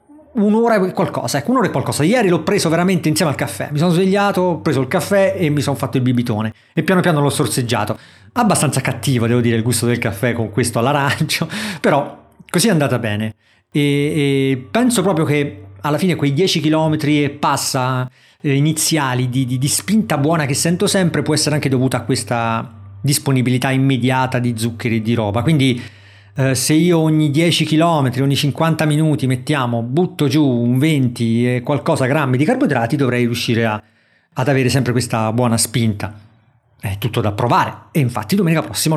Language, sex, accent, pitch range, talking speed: Italian, male, native, 120-160 Hz, 180 wpm